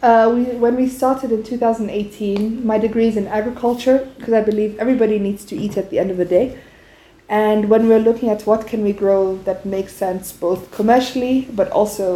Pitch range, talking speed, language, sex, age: 200-240 Hz, 200 wpm, English, female, 20-39